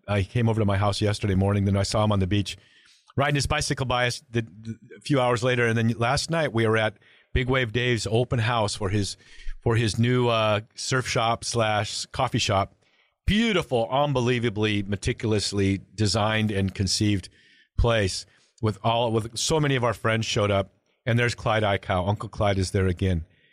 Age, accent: 40-59, American